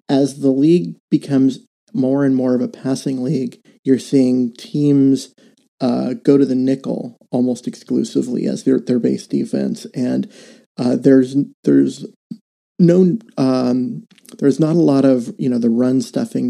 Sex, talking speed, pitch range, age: male, 155 wpm, 130-160 Hz, 30-49